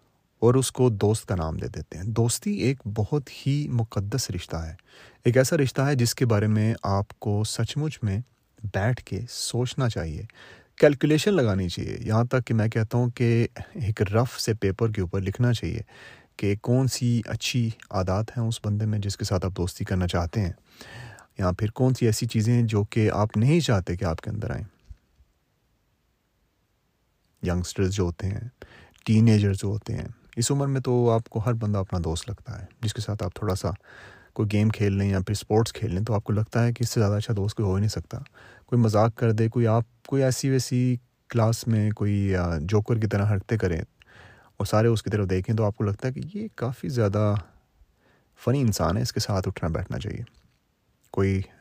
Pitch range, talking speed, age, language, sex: 100-120 Hz, 200 wpm, 30-49, Urdu, male